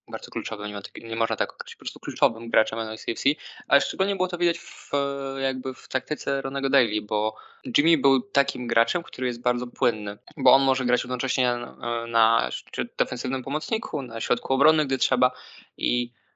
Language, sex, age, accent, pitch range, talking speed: Polish, male, 20-39, native, 110-130 Hz, 165 wpm